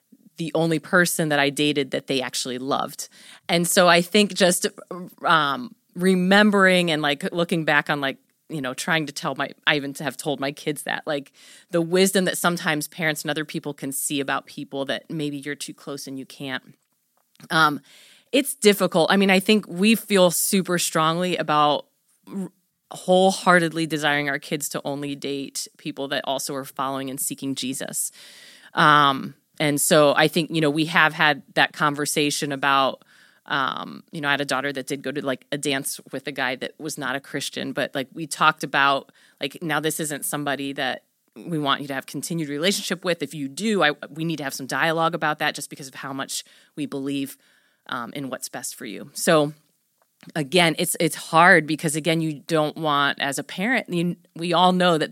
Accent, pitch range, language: American, 140-175 Hz, English